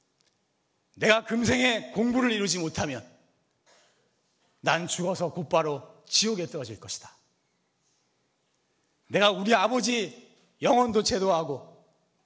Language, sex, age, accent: Korean, male, 40-59, native